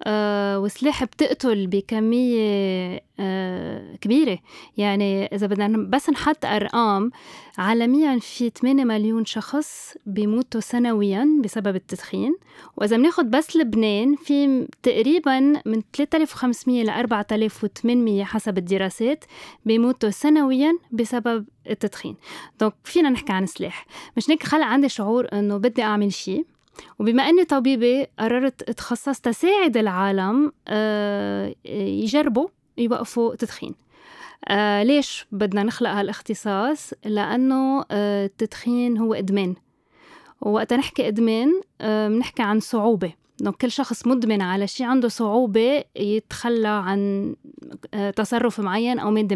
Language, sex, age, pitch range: Arabic, female, 20-39, 210-265 Hz